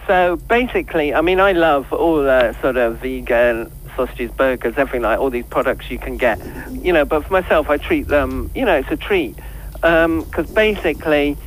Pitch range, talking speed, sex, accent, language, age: 135-170 Hz, 195 wpm, male, British, English, 50-69